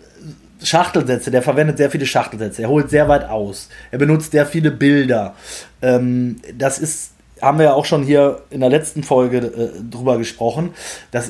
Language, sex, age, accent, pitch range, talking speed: German, male, 20-39, German, 125-155 Hz, 175 wpm